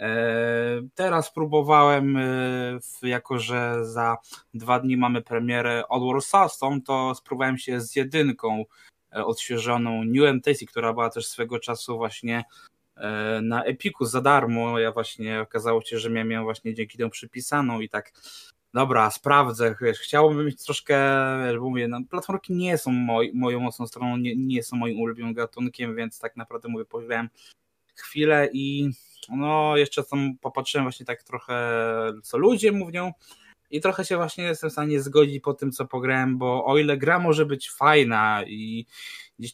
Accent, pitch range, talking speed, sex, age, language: native, 120-145 Hz, 160 wpm, male, 20-39, Polish